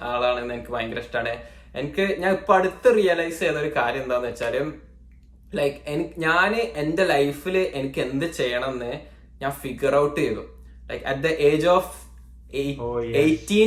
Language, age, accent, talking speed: Malayalam, 20-39, native, 140 wpm